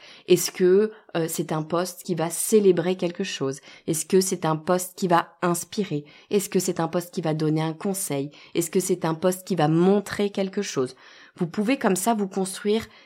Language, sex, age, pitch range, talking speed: French, female, 20-39, 155-200 Hz, 205 wpm